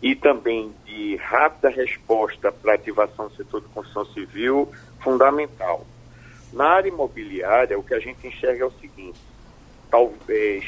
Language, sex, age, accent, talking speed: Portuguese, male, 50-69, Brazilian, 140 wpm